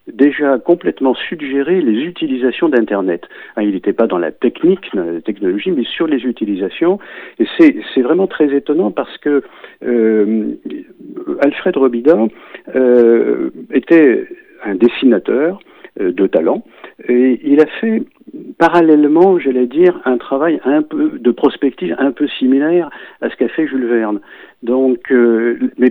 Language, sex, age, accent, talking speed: French, male, 50-69, French, 135 wpm